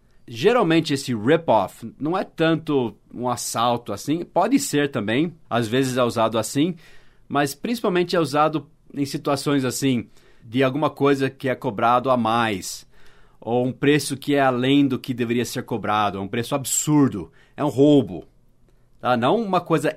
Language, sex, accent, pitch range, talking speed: English, male, Brazilian, 120-145 Hz, 160 wpm